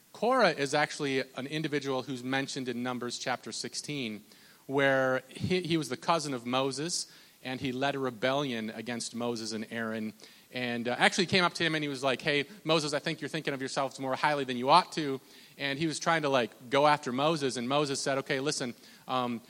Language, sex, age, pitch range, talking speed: English, male, 30-49, 130-160 Hz, 210 wpm